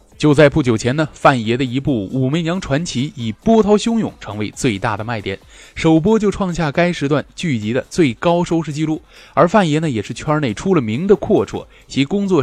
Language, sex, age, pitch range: Chinese, male, 20-39, 120-175 Hz